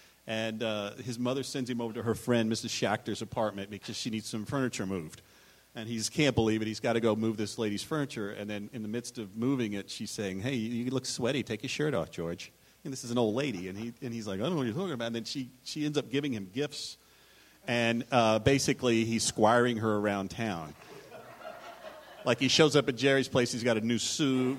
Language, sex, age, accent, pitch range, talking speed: English, male, 40-59, American, 110-140 Hz, 235 wpm